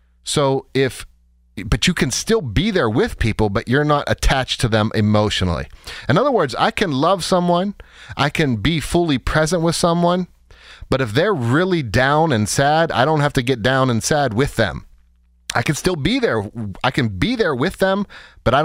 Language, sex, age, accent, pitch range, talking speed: English, male, 30-49, American, 110-160 Hz, 195 wpm